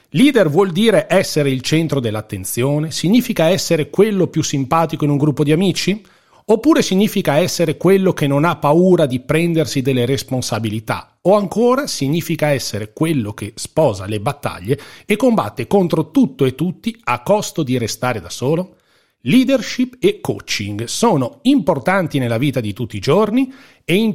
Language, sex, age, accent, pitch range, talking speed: Italian, male, 40-59, native, 125-195 Hz, 155 wpm